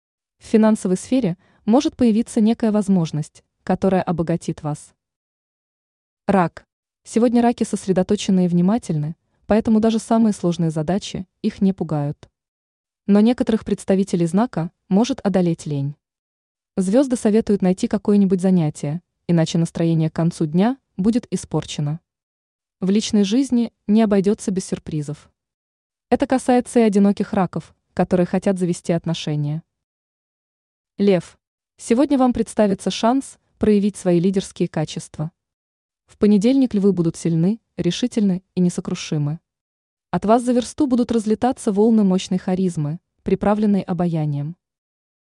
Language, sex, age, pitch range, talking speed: Russian, female, 20-39, 170-220 Hz, 115 wpm